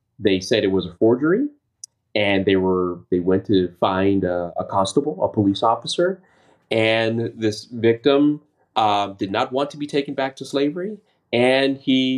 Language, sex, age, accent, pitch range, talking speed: English, male, 30-49, American, 100-130 Hz, 170 wpm